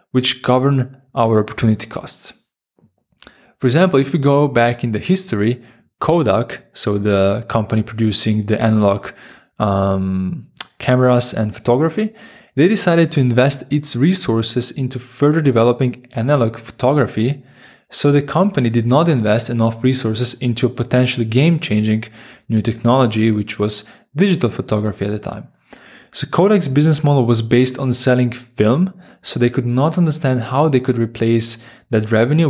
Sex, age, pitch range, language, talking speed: male, 20-39, 115-135 Hz, English, 140 wpm